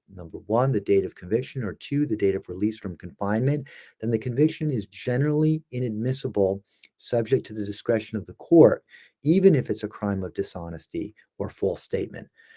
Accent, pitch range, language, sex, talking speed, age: American, 100-130 Hz, English, male, 175 wpm, 40-59